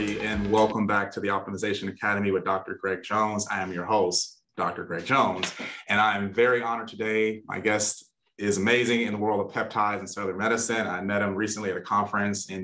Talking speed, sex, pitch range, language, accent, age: 210 wpm, male, 100-115 Hz, English, American, 30-49